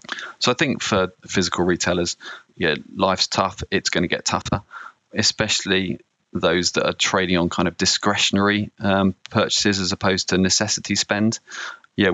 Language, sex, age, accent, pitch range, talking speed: English, male, 20-39, British, 90-95 Hz, 155 wpm